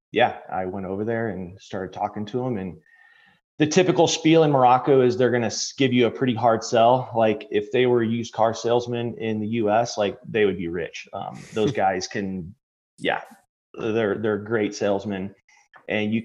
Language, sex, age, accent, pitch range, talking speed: English, male, 30-49, American, 95-125 Hz, 195 wpm